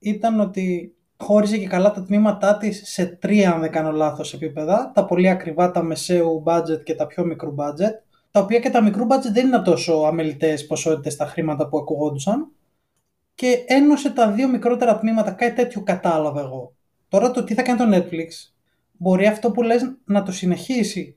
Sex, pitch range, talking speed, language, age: male, 170-225 Hz, 180 wpm, Greek, 20-39